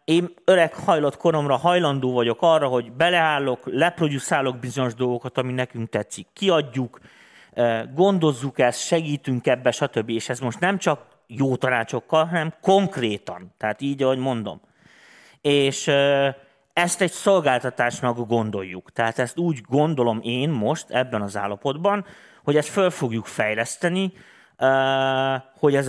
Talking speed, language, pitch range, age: 130 wpm, Hungarian, 120-150 Hz, 30-49